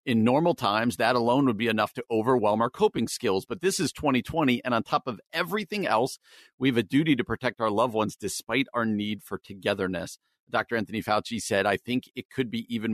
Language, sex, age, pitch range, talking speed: English, male, 50-69, 110-145 Hz, 220 wpm